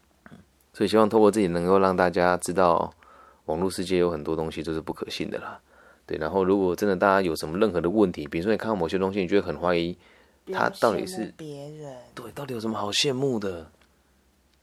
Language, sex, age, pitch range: Chinese, male, 20-39, 80-105 Hz